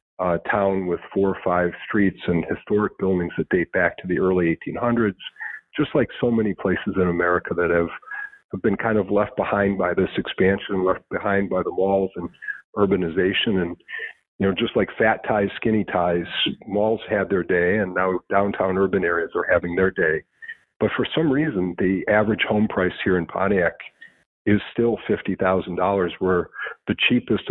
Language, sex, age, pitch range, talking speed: English, male, 50-69, 90-100 Hz, 175 wpm